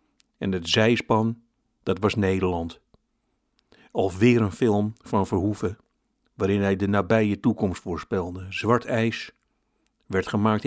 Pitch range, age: 100-115 Hz, 60-79